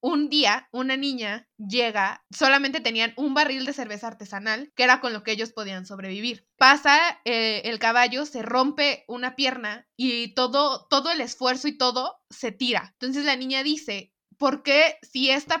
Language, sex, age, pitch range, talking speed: Spanish, female, 20-39, 230-280 Hz, 175 wpm